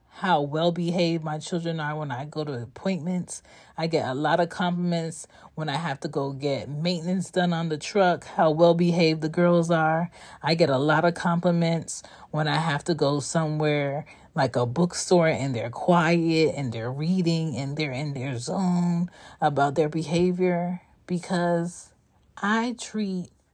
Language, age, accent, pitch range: English, 30-49, American, 145-175 Hz